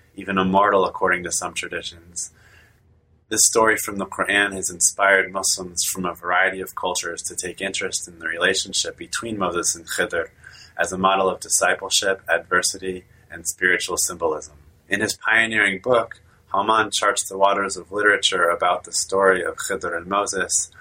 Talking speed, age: 160 wpm, 20-39